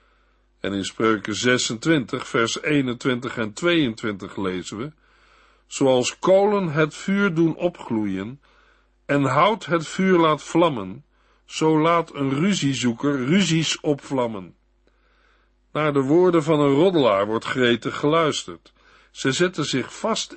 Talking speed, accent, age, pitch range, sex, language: 120 wpm, Dutch, 50-69, 120-170 Hz, male, Dutch